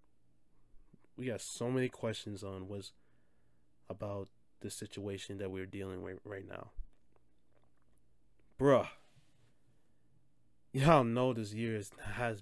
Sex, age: male, 20-39